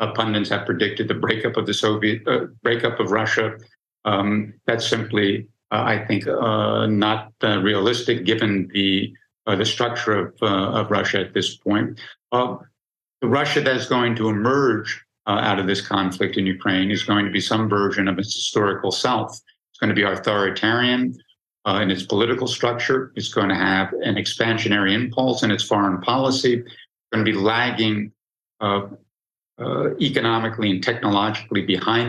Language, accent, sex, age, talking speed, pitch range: English, American, male, 50-69, 170 wpm, 105-120 Hz